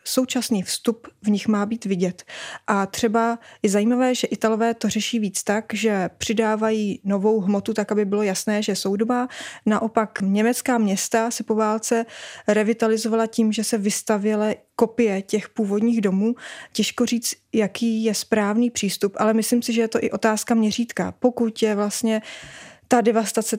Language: Czech